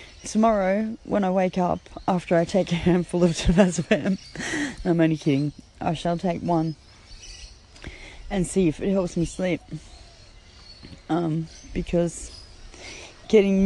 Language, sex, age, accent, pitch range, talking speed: English, female, 20-39, Australian, 170-200 Hz, 125 wpm